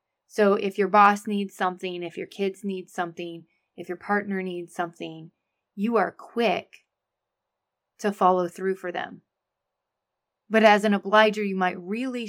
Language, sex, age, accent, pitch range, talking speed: English, female, 20-39, American, 180-215 Hz, 150 wpm